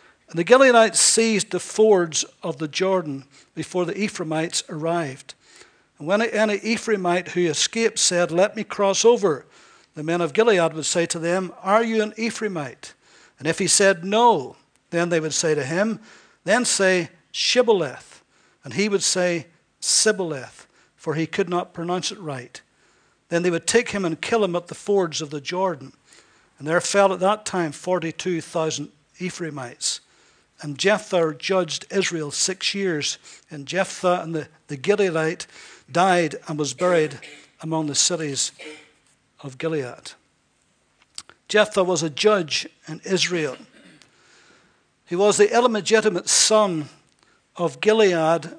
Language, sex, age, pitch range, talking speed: English, male, 60-79, 160-205 Hz, 145 wpm